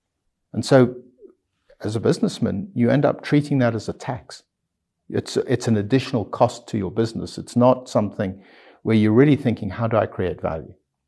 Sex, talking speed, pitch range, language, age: male, 180 wpm, 100-125 Hz, English, 50-69